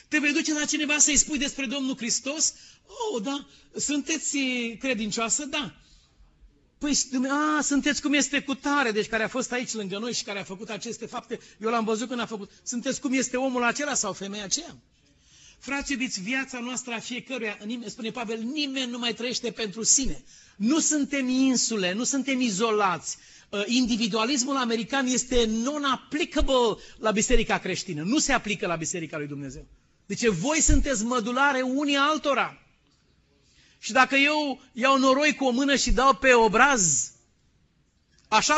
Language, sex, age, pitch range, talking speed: Romanian, male, 40-59, 200-270 Hz, 155 wpm